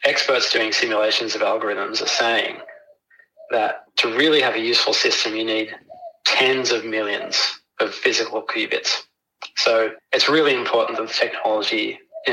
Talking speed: 145 wpm